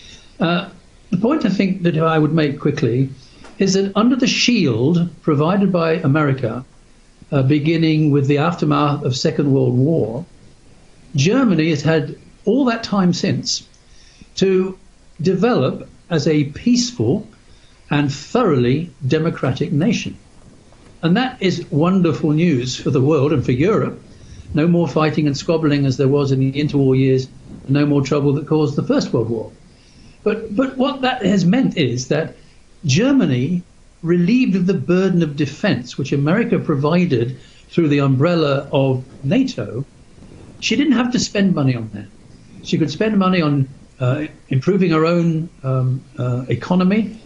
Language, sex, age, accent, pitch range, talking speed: English, male, 60-79, British, 135-185 Hz, 150 wpm